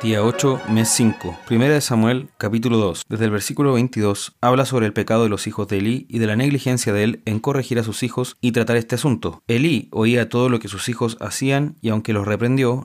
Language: Spanish